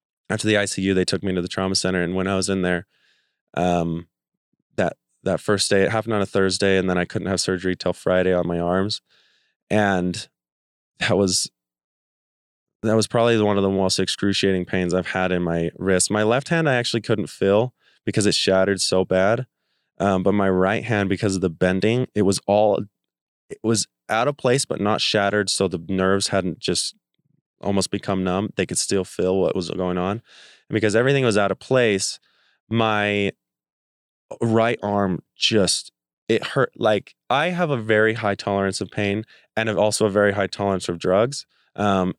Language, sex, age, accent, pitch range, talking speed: English, male, 20-39, American, 90-105 Hz, 190 wpm